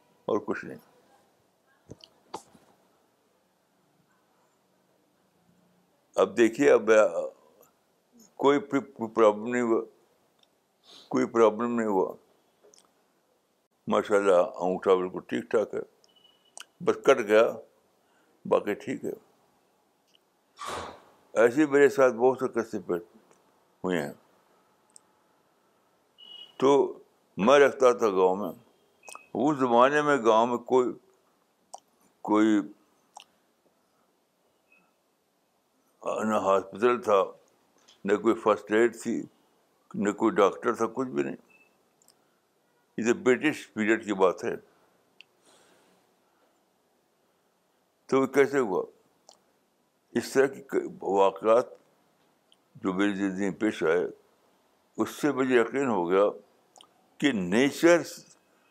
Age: 60-79